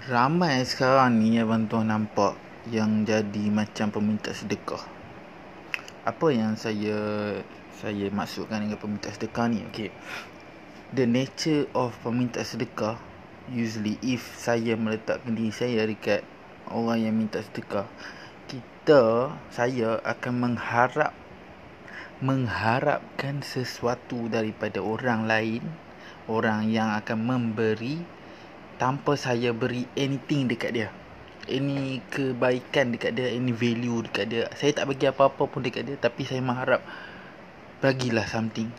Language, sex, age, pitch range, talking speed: Malay, male, 20-39, 110-130 Hz, 120 wpm